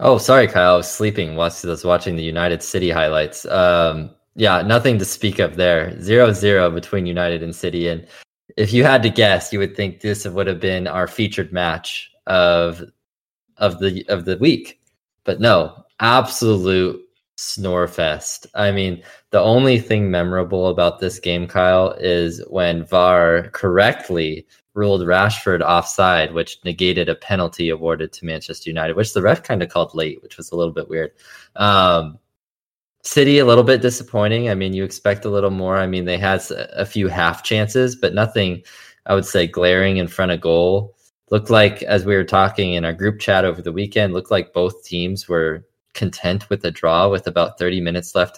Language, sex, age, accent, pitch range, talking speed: English, male, 20-39, American, 85-105 Hz, 185 wpm